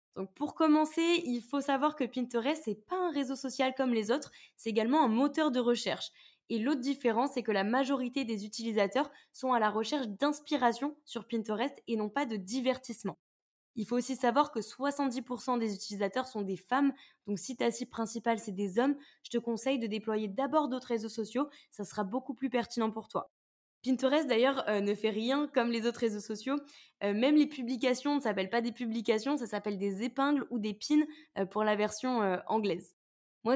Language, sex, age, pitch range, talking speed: French, female, 10-29, 220-275 Hz, 200 wpm